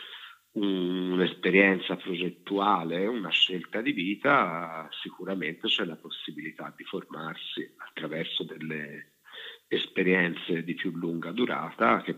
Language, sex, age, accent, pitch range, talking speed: Italian, male, 50-69, native, 80-95 Hz, 100 wpm